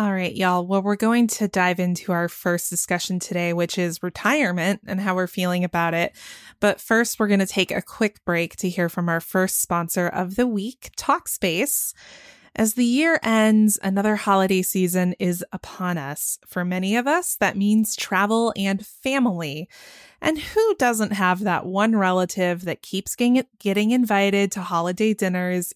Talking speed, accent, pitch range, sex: 170 wpm, American, 180-220 Hz, female